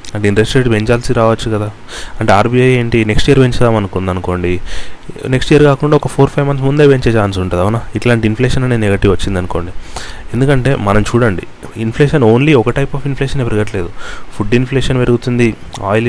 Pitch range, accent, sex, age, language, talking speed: 100-125 Hz, native, male, 30-49, Telugu, 165 wpm